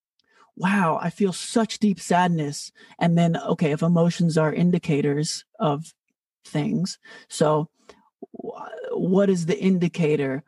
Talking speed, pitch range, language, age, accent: 115 wpm, 165-220 Hz, English, 50-69, American